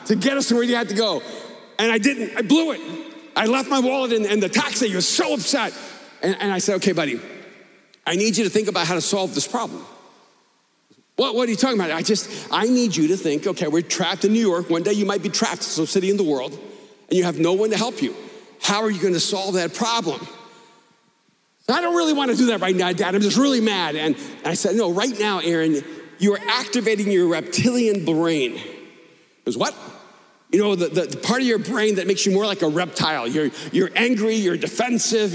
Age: 50-69